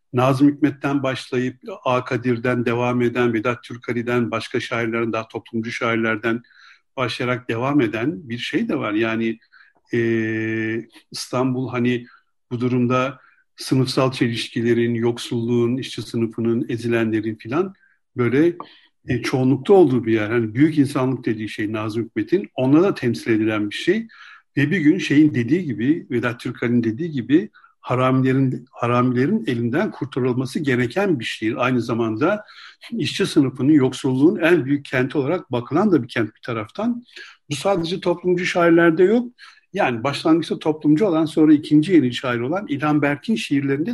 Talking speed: 140 wpm